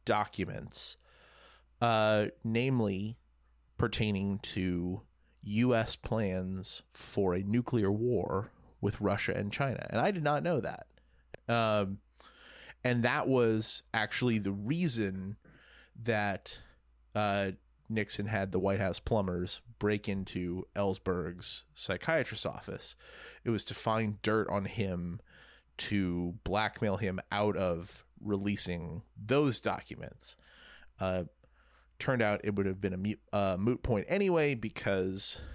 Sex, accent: male, American